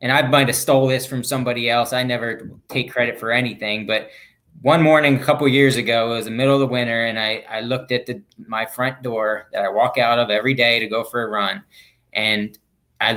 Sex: male